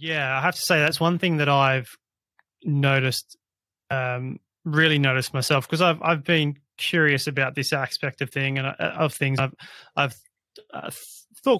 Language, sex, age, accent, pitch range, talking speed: English, male, 20-39, Australian, 130-145 Hz, 165 wpm